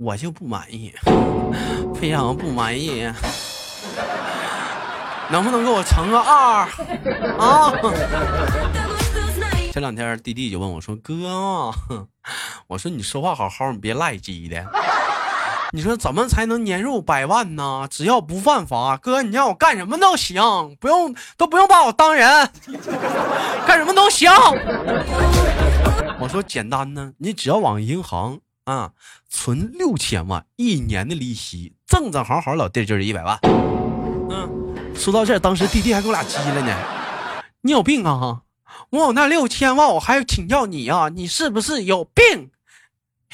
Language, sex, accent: Chinese, male, native